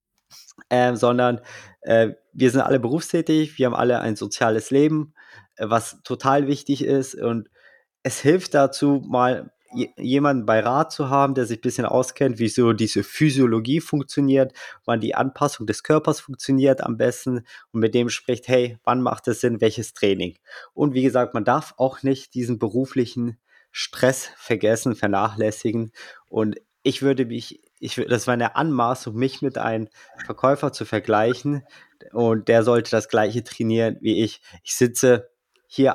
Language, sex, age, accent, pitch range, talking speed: German, male, 20-39, German, 115-135 Hz, 160 wpm